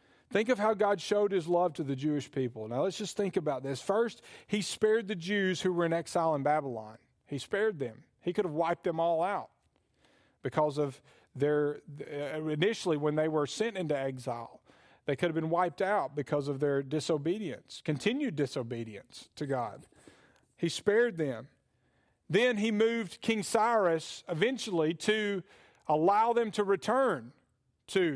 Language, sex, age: English, male, 40-59